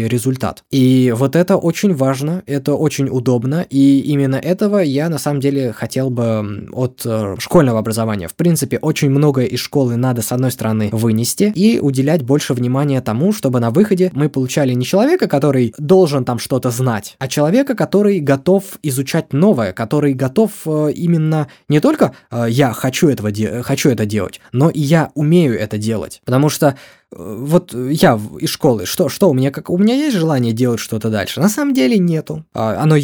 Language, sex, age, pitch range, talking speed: Russian, male, 20-39, 125-165 Hz, 180 wpm